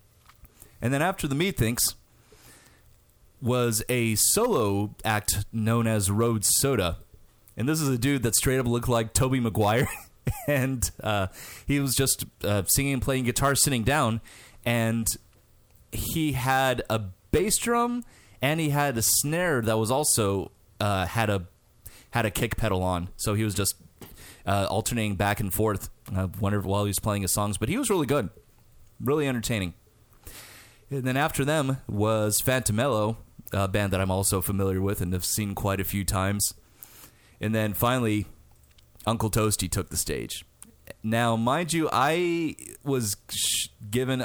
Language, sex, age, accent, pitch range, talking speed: English, male, 30-49, American, 100-130 Hz, 160 wpm